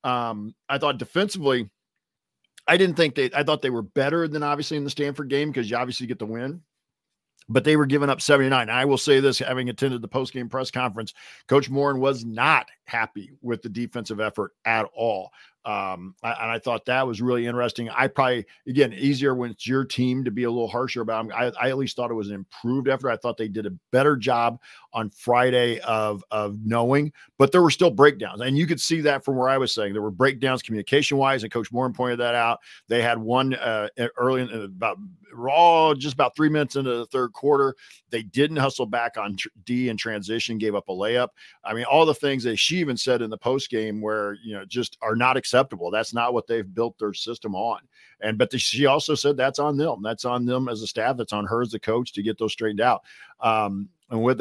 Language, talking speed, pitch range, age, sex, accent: English, 230 wpm, 115-140 Hz, 50-69, male, American